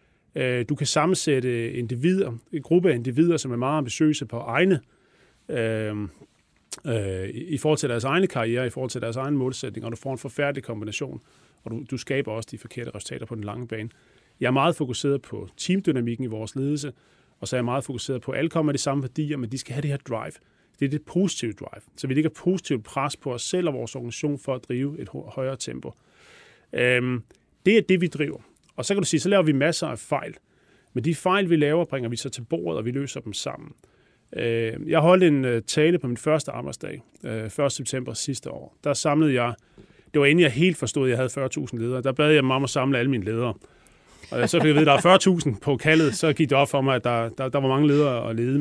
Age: 30-49